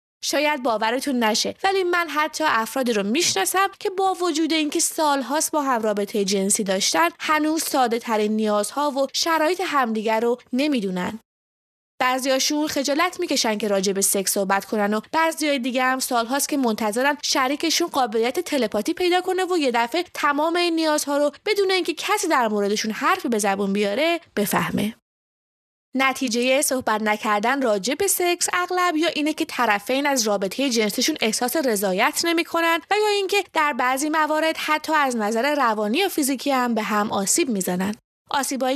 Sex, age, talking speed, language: female, 20-39, 160 wpm, English